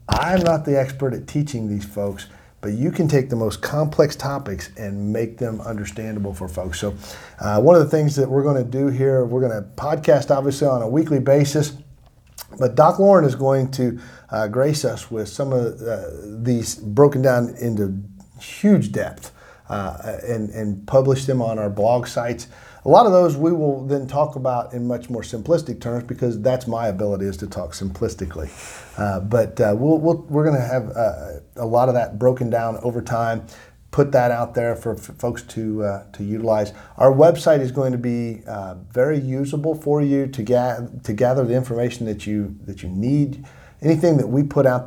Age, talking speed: 40-59, 195 wpm